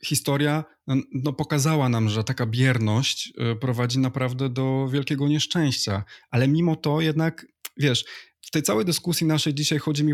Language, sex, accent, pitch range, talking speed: Polish, male, native, 120-150 Hz, 140 wpm